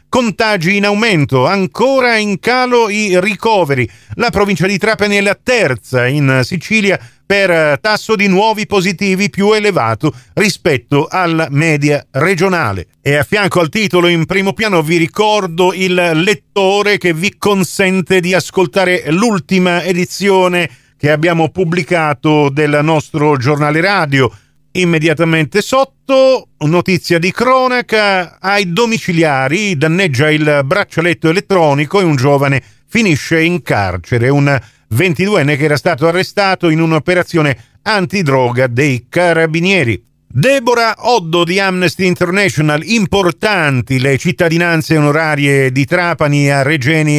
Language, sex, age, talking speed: Italian, male, 40-59, 120 wpm